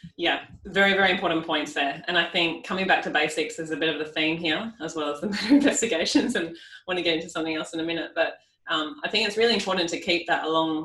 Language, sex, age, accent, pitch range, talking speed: English, female, 20-39, Australian, 150-180 Hz, 260 wpm